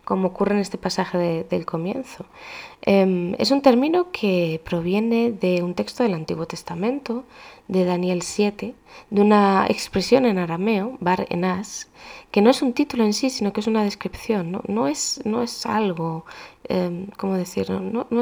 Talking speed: 145 wpm